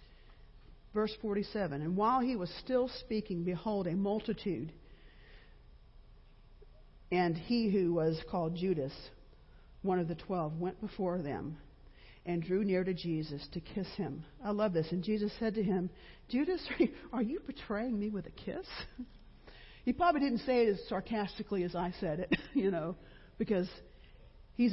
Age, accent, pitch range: 50-69, American, 175-240 Hz